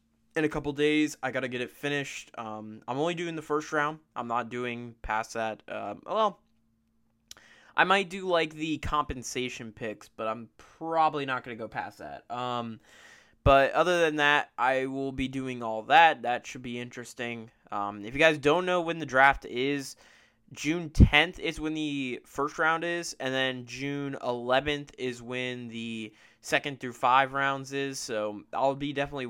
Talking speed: 180 wpm